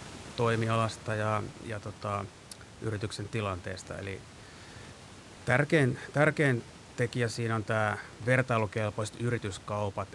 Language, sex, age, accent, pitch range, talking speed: Finnish, male, 30-49, native, 100-115 Hz, 90 wpm